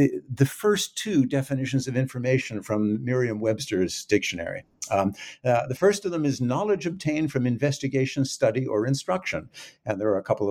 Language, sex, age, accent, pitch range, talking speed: English, male, 60-79, American, 110-150 Hz, 160 wpm